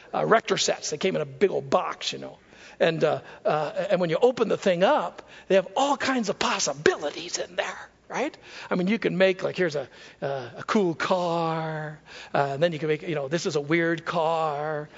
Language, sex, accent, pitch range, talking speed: English, male, American, 170-275 Hz, 225 wpm